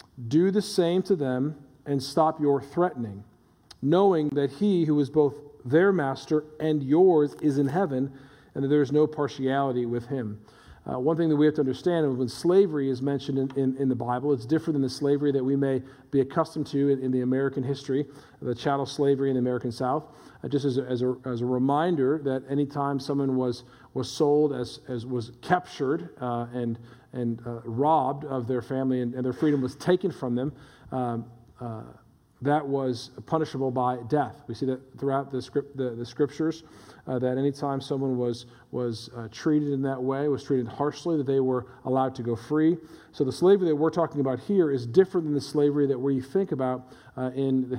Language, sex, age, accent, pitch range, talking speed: English, male, 40-59, American, 125-150 Hz, 205 wpm